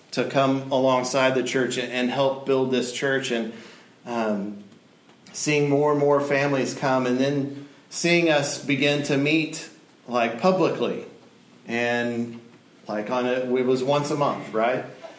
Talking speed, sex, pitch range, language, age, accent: 140 wpm, male, 125-145 Hz, English, 40-59, American